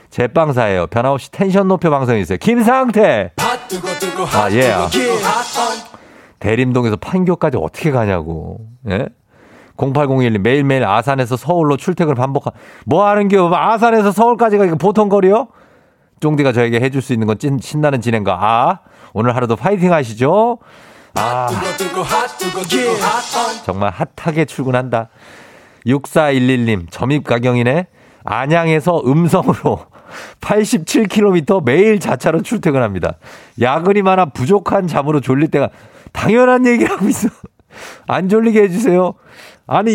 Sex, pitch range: male, 120-195 Hz